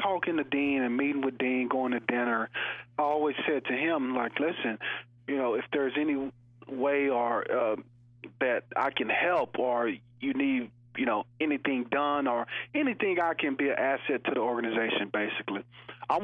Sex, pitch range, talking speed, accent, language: male, 125-145 Hz, 175 wpm, American, English